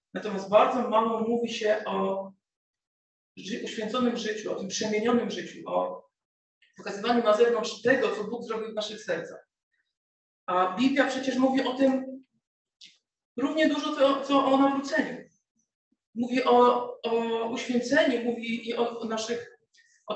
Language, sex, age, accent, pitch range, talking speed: Polish, female, 40-59, native, 220-260 Hz, 125 wpm